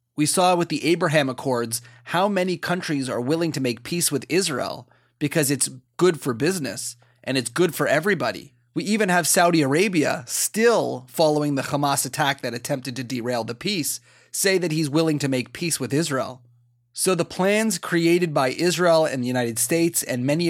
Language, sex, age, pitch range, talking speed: English, male, 30-49, 125-160 Hz, 185 wpm